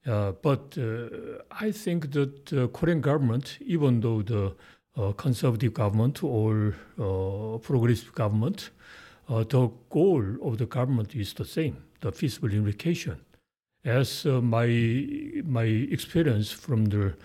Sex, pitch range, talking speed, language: male, 110-150 Hz, 135 wpm, English